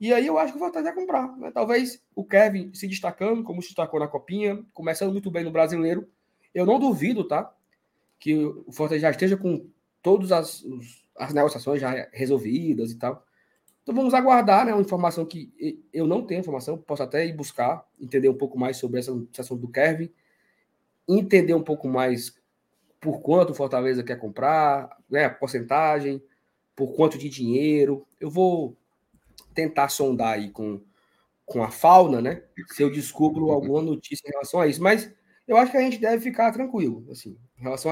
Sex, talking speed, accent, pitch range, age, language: male, 180 wpm, Brazilian, 140-195 Hz, 20-39, Portuguese